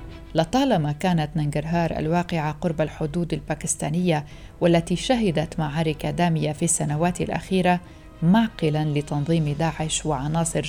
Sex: female